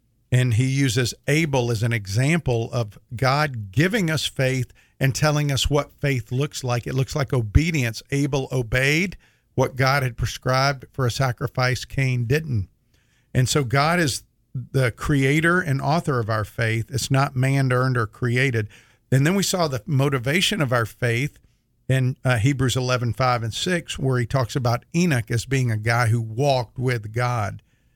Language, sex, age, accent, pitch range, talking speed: English, male, 50-69, American, 115-135 Hz, 175 wpm